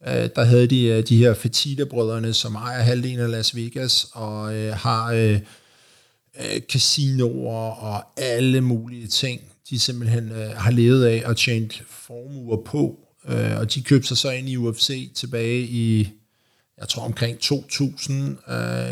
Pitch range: 115-130 Hz